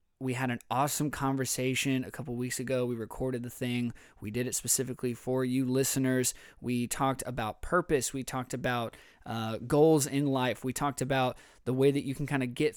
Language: English